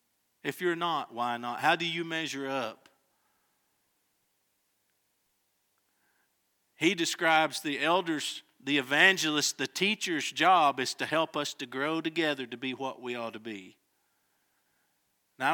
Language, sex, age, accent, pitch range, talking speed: English, male, 50-69, American, 145-205 Hz, 130 wpm